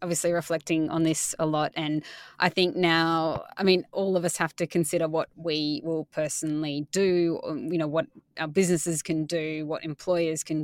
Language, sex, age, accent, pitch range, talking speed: English, female, 20-39, Australian, 160-180 Hz, 185 wpm